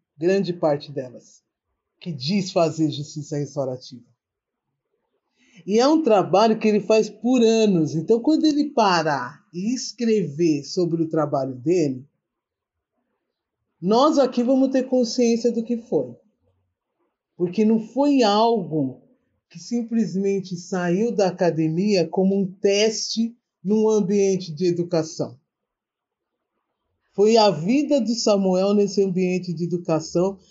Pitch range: 165-220 Hz